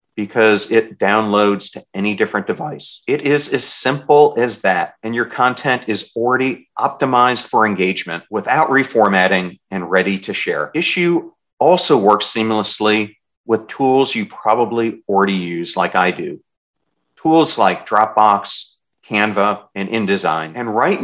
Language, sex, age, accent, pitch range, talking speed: English, male, 40-59, American, 100-135 Hz, 135 wpm